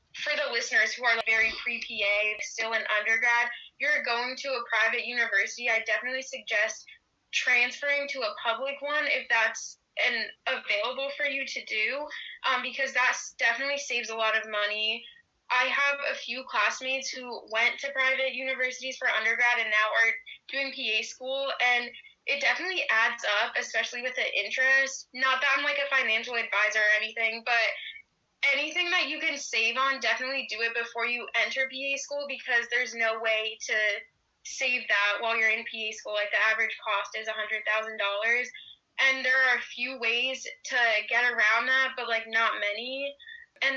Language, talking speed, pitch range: English, 170 wpm, 225-270 Hz